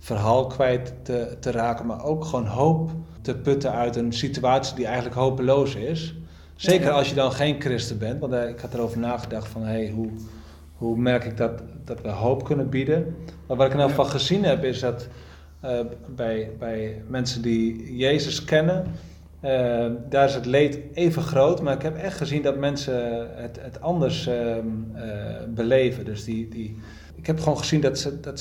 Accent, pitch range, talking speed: Dutch, 110-135 Hz, 190 wpm